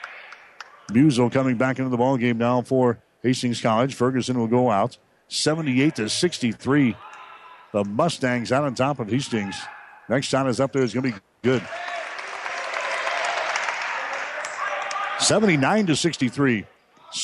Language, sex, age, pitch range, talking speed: English, male, 50-69, 125-145 Hz, 130 wpm